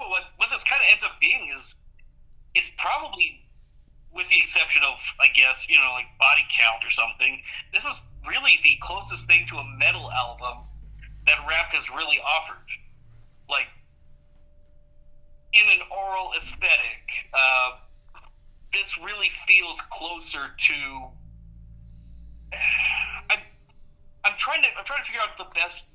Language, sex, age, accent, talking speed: English, male, 40-59, American, 145 wpm